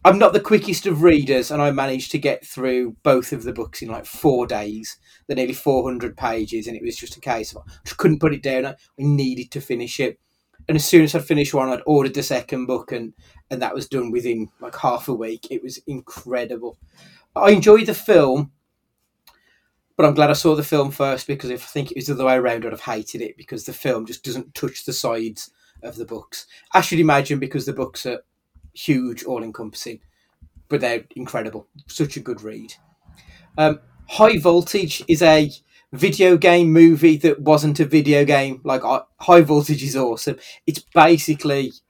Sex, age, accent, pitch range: male, 30-49, British, 125-155 Hz